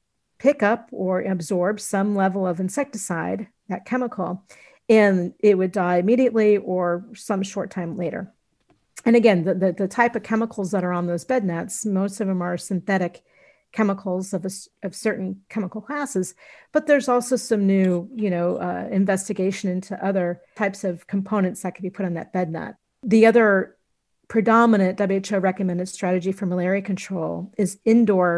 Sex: female